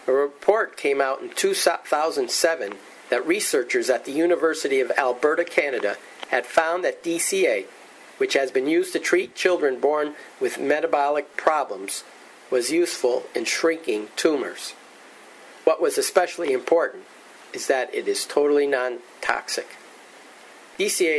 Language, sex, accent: English, male, American